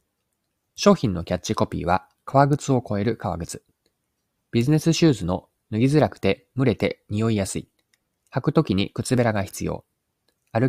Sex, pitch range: male, 95-135 Hz